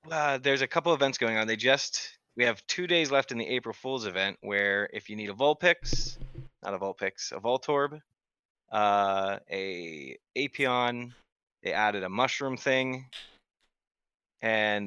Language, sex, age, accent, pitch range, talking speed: English, male, 20-39, American, 100-130 Hz, 155 wpm